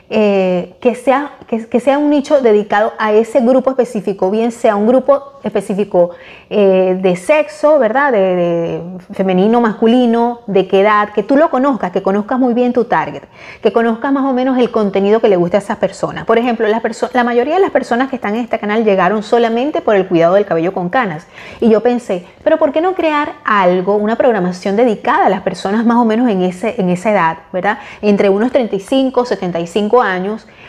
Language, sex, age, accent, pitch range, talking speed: Spanish, female, 30-49, American, 190-235 Hz, 205 wpm